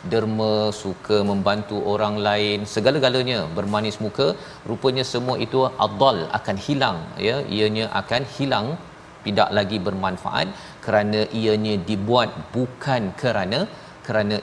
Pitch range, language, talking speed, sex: 105-120 Hz, Malayalam, 110 wpm, male